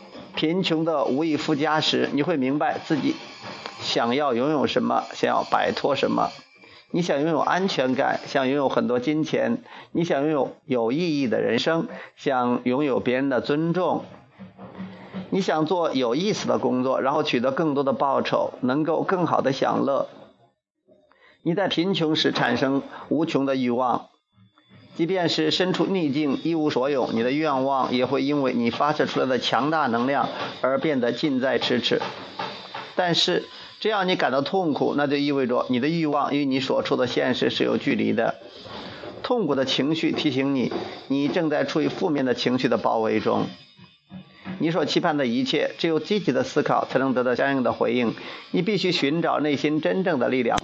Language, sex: Chinese, male